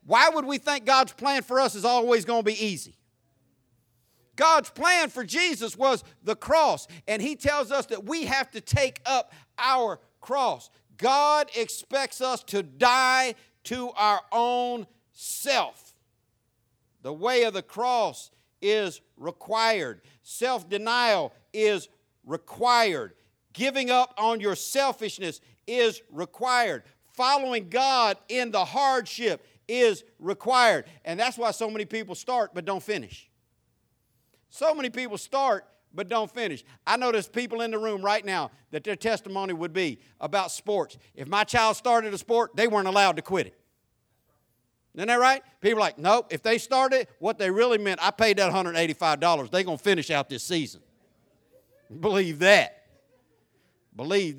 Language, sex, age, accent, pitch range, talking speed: English, male, 50-69, American, 185-250 Hz, 155 wpm